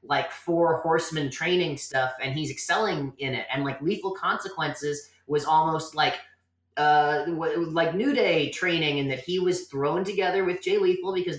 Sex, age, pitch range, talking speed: male, 30-49, 135-165 Hz, 170 wpm